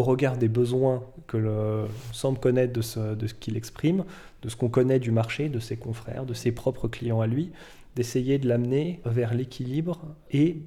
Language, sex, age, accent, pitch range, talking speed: French, male, 20-39, French, 115-135 Hz, 190 wpm